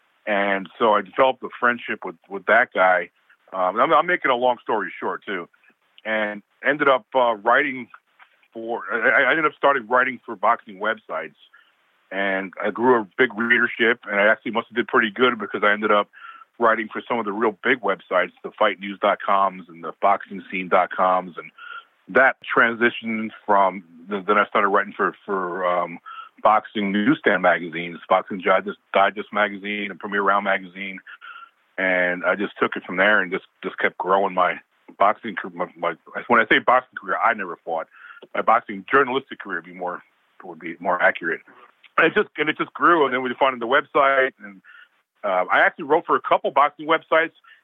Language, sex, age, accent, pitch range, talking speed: English, male, 40-59, American, 100-140 Hz, 180 wpm